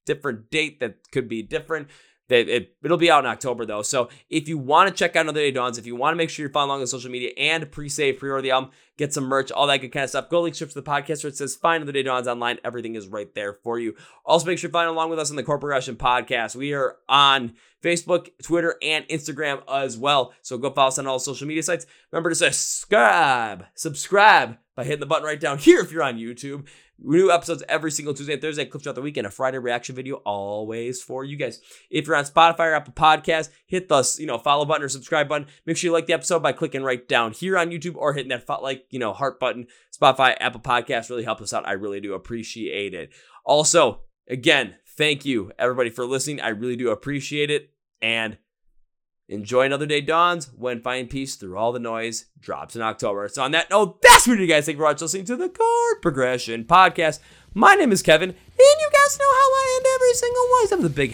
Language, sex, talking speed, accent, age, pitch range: English, male, 240 wpm, American, 20-39, 130-170 Hz